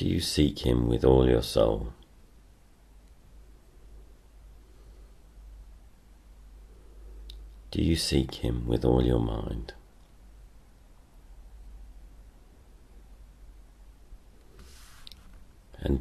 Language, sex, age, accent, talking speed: English, male, 40-59, British, 65 wpm